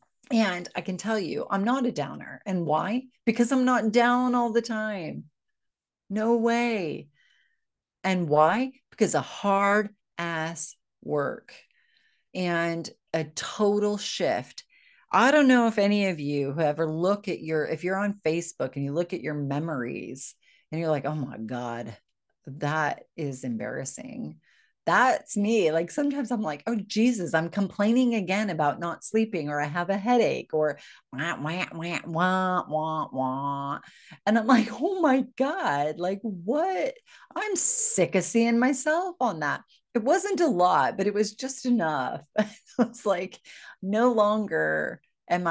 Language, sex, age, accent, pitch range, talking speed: English, female, 40-59, American, 155-235 Hz, 155 wpm